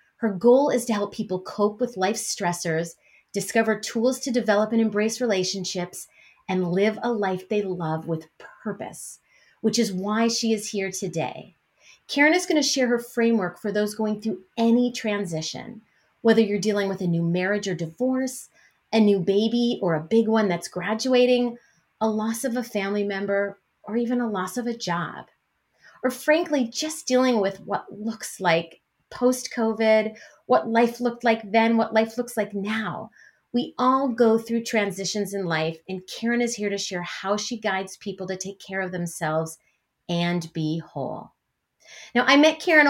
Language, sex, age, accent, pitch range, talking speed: English, female, 30-49, American, 185-240 Hz, 175 wpm